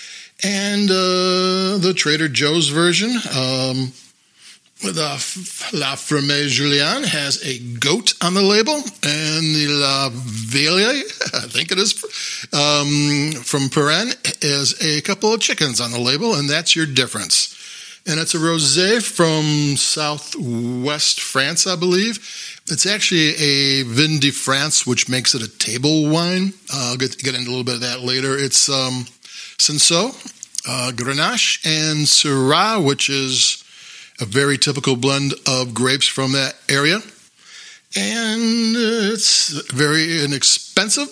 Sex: male